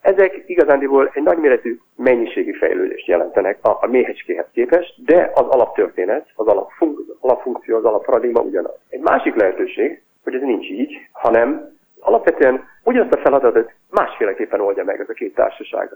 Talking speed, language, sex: 145 wpm, Hungarian, male